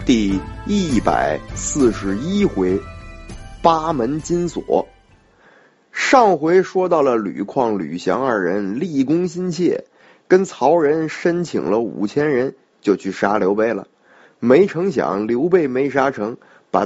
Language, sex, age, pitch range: Chinese, male, 20-39, 105-175 Hz